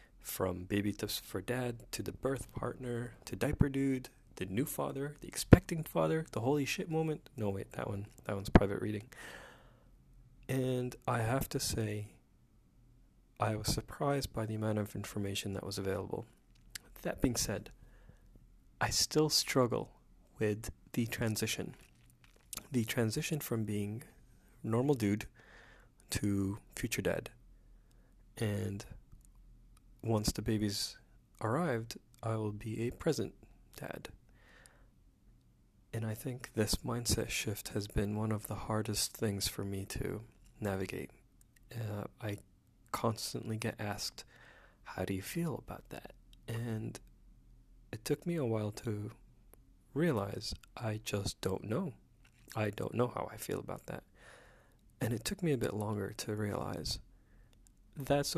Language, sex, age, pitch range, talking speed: English, male, 30-49, 105-125 Hz, 135 wpm